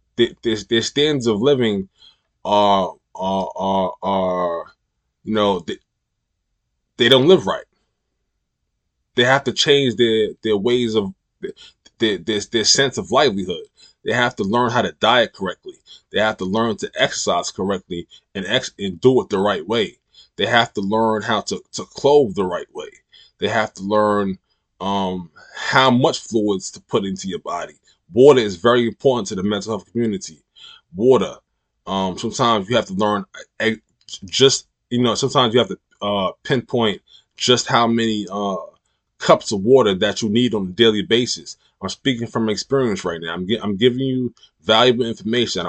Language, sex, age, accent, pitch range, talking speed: English, male, 20-39, American, 100-125 Hz, 170 wpm